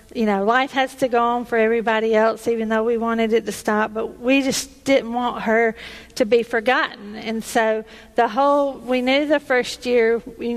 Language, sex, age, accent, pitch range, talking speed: English, female, 50-69, American, 220-245 Hz, 200 wpm